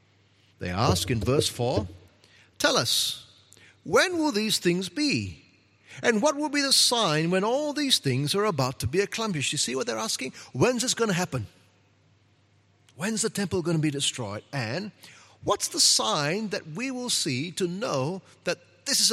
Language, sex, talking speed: English, male, 180 wpm